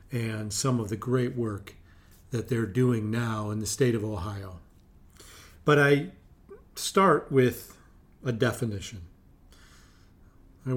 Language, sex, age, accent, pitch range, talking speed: English, male, 40-59, American, 105-135 Hz, 125 wpm